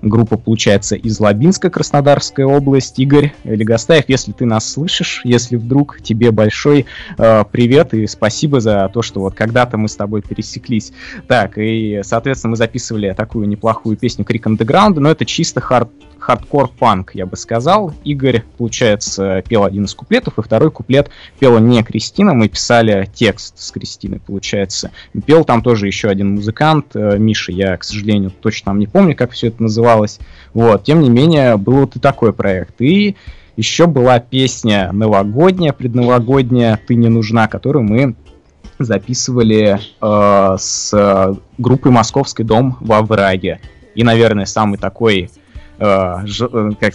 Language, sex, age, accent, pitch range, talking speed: Russian, male, 20-39, native, 100-125 Hz, 150 wpm